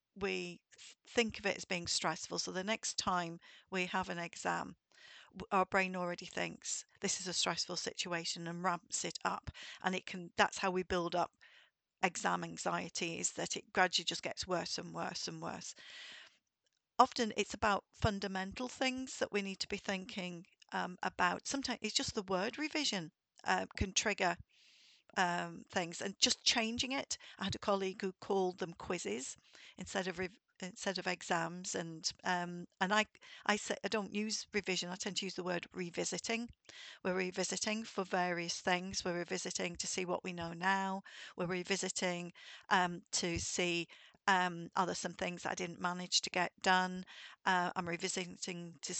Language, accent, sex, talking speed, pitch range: English, British, female, 175 wpm, 180-205 Hz